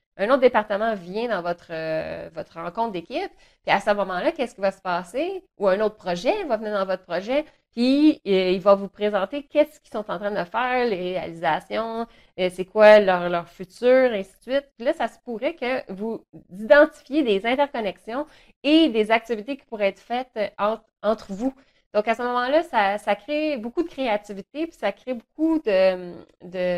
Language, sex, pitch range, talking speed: French, female, 185-245 Hz, 195 wpm